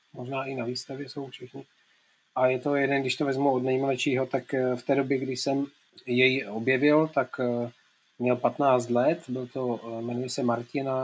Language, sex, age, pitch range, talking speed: Czech, male, 30-49, 125-140 Hz, 170 wpm